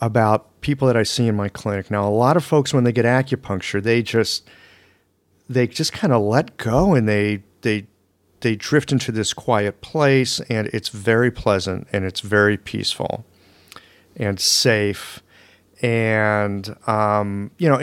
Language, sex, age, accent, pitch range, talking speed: English, male, 40-59, American, 105-150 Hz, 160 wpm